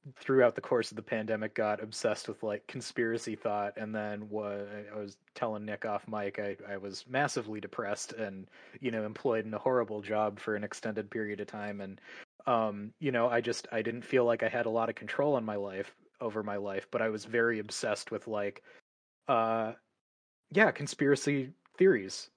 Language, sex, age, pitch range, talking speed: English, male, 20-39, 105-125 Hz, 195 wpm